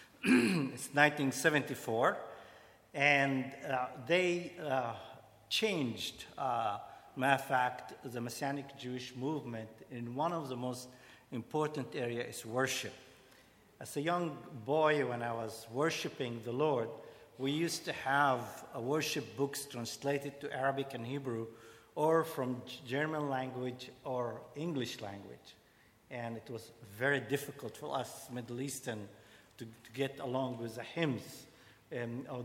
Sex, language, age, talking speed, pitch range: male, English, 50-69, 130 wpm, 120-145 Hz